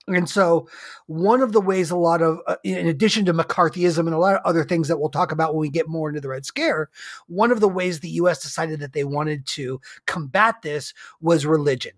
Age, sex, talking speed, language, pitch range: 30-49, male, 235 wpm, English, 150-190 Hz